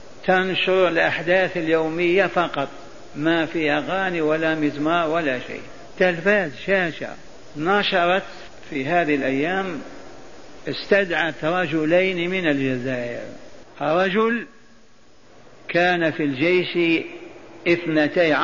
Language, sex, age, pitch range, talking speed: Arabic, male, 50-69, 155-190 Hz, 85 wpm